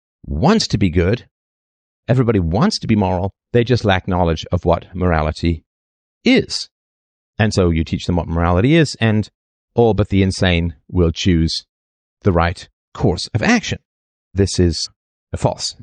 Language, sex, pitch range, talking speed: English, male, 85-110 Hz, 150 wpm